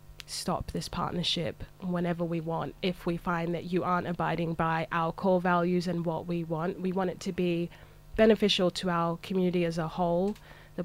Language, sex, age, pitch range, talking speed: English, female, 20-39, 170-185 Hz, 190 wpm